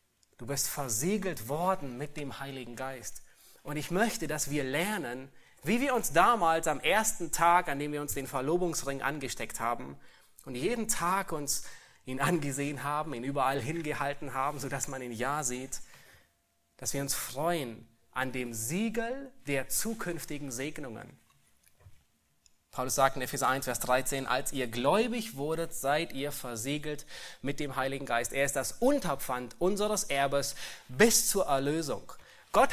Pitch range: 130-180 Hz